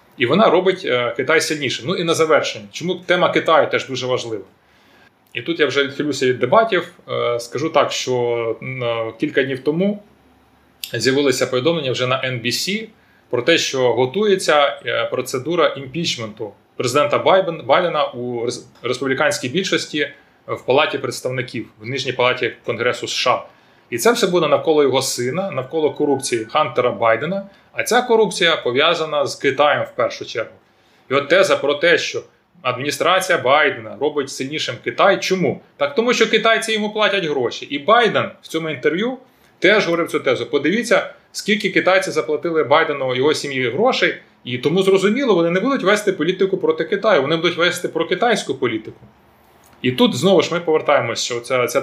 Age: 20-39